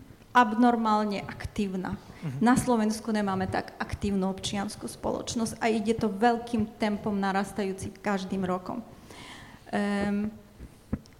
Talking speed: 95 wpm